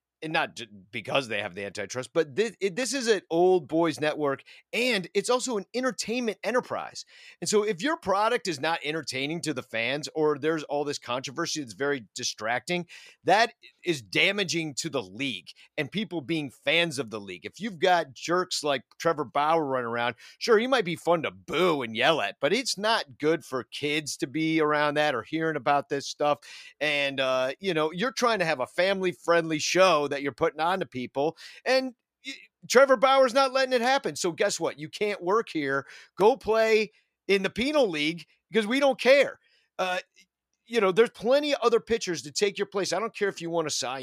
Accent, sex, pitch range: American, male, 150-220 Hz